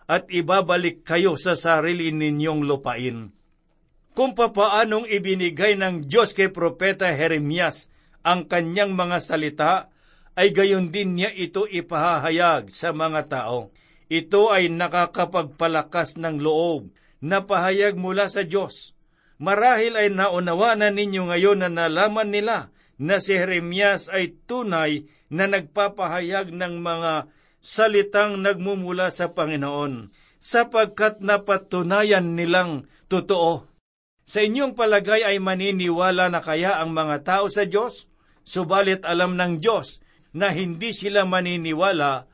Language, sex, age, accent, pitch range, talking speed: Filipino, male, 50-69, native, 165-200 Hz, 115 wpm